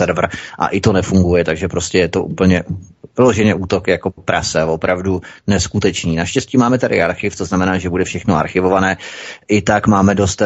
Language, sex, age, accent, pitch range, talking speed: Czech, male, 30-49, native, 90-105 Hz, 170 wpm